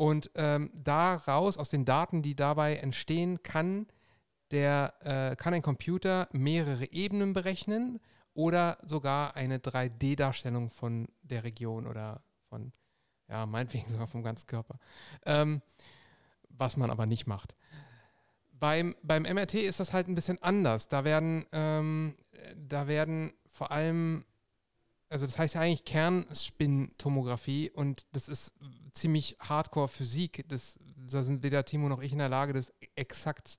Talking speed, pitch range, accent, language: 140 wpm, 130-160 Hz, German, German